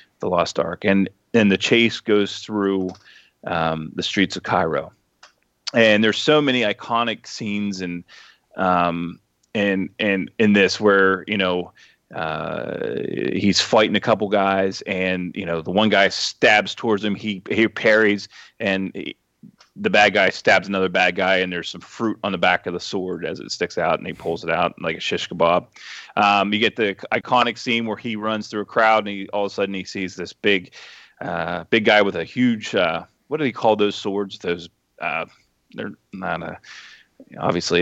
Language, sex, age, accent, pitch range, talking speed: English, male, 30-49, American, 95-110 Hz, 190 wpm